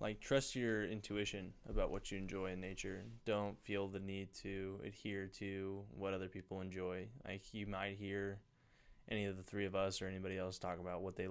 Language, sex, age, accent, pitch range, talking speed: English, male, 10-29, American, 95-105 Hz, 200 wpm